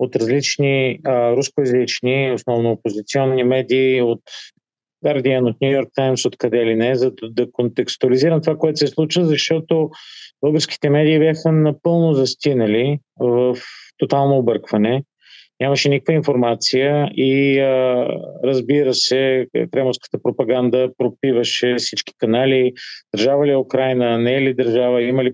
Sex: male